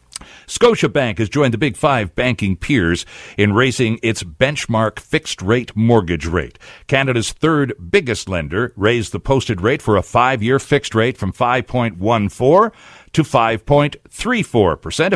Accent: American